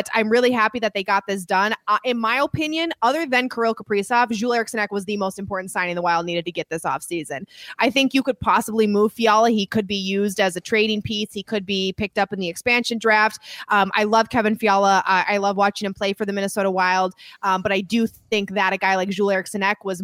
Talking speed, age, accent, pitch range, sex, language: 245 wpm, 20-39, American, 185-215 Hz, female, English